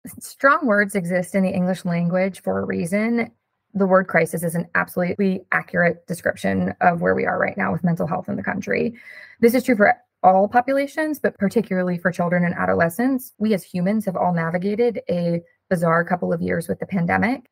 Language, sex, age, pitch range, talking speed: English, female, 20-39, 180-210 Hz, 190 wpm